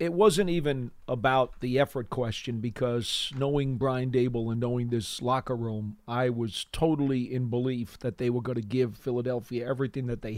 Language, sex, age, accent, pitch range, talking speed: English, male, 40-59, American, 125-180 Hz, 180 wpm